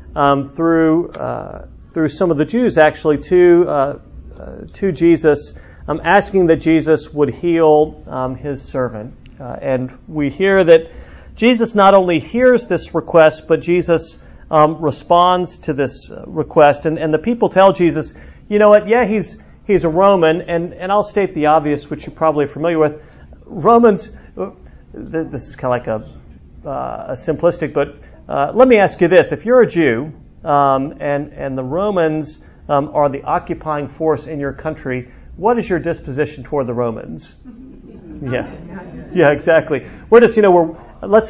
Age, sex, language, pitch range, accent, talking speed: 40-59, male, English, 145-180 Hz, American, 170 wpm